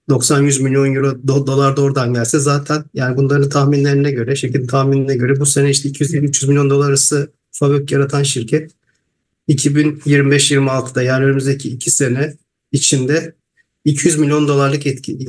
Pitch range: 130-150 Hz